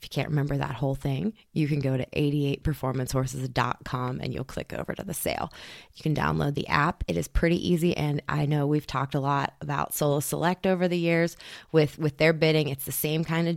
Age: 20-39